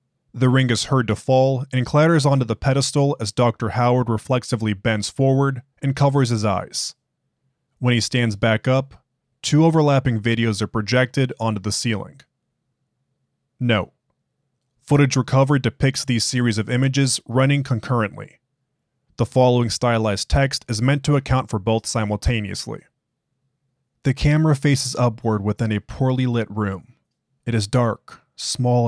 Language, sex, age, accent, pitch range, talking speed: English, male, 20-39, American, 110-135 Hz, 140 wpm